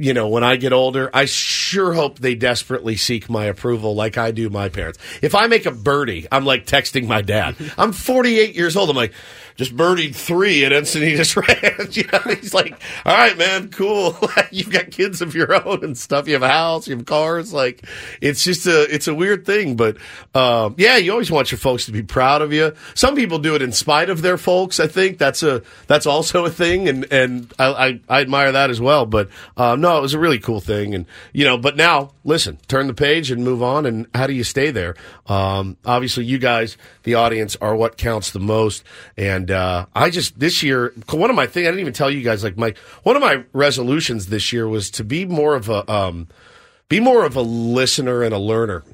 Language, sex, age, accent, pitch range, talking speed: English, male, 50-69, American, 115-155 Hz, 230 wpm